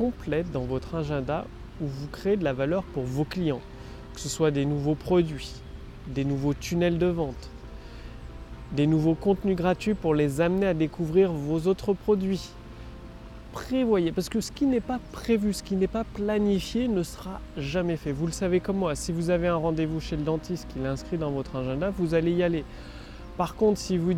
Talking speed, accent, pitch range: 195 wpm, French, 150-190 Hz